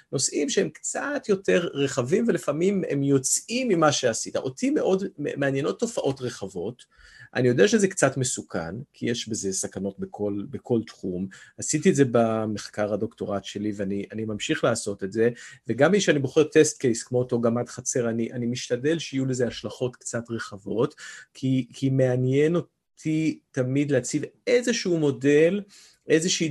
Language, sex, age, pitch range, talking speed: Hebrew, male, 40-59, 115-155 Hz, 150 wpm